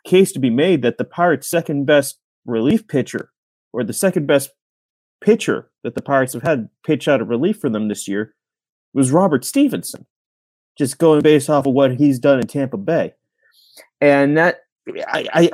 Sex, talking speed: male, 180 wpm